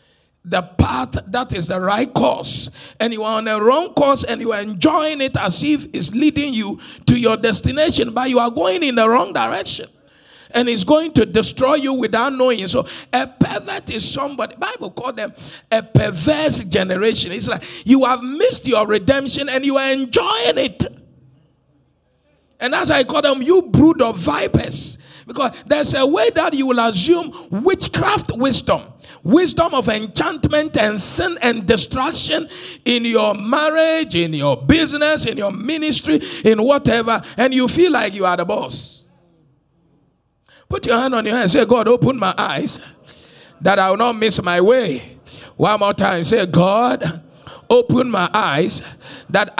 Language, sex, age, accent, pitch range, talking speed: English, male, 50-69, Nigerian, 200-285 Hz, 170 wpm